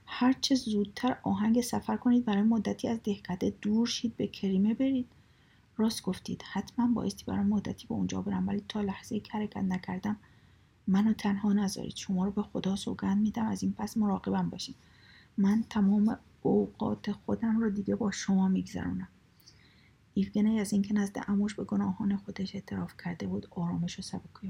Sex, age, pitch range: female, 30-49, 185-210 Hz